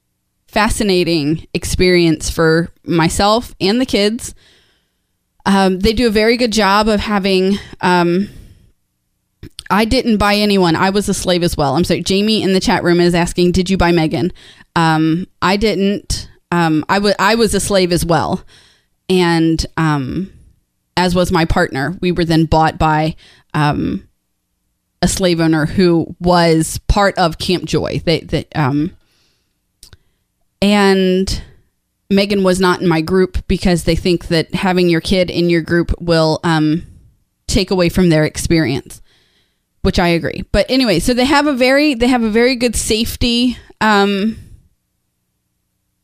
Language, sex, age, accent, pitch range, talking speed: English, female, 20-39, American, 160-195 Hz, 155 wpm